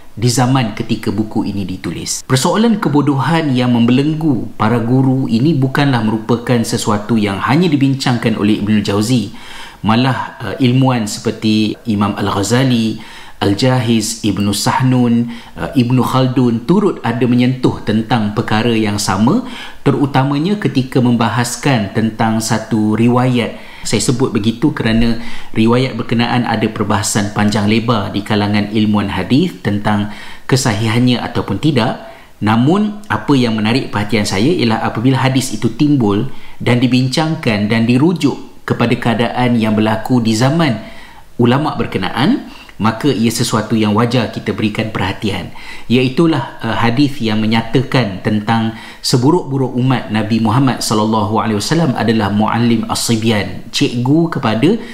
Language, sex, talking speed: Malay, male, 125 wpm